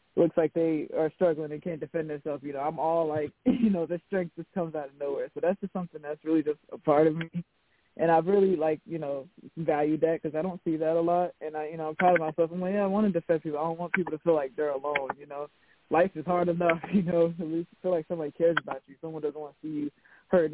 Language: English